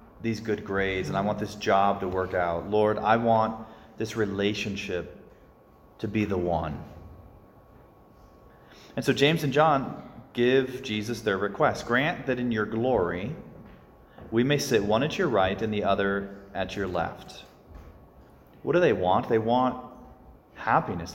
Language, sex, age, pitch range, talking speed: English, male, 30-49, 100-125 Hz, 155 wpm